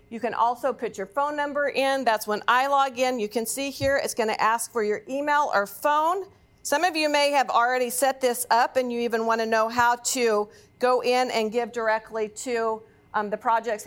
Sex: female